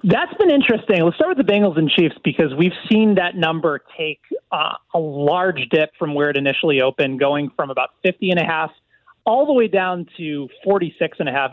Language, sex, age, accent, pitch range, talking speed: English, male, 30-49, American, 160-210 Hz, 215 wpm